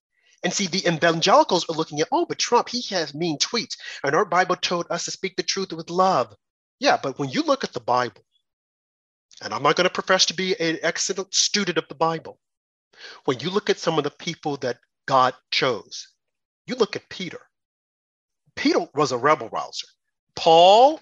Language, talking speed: English, 195 wpm